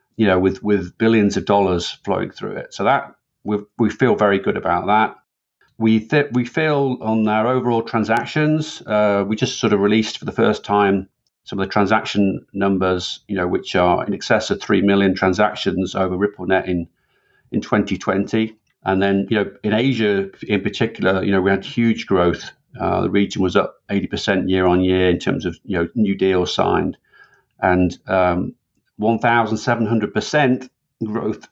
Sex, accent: male, British